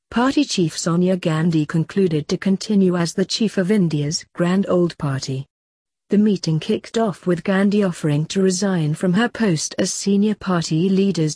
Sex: female